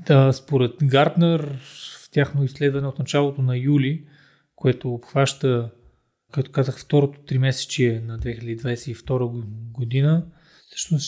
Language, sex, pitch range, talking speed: Bulgarian, male, 135-155 Hz, 110 wpm